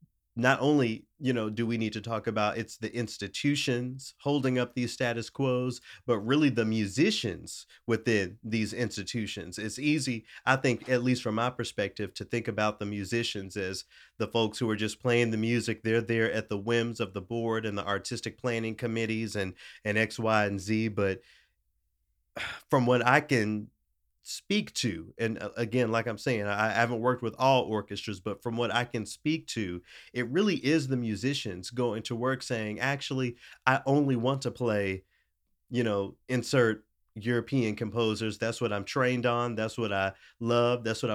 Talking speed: 180 wpm